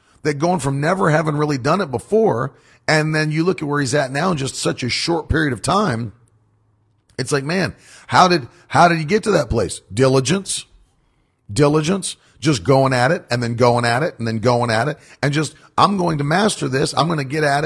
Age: 40-59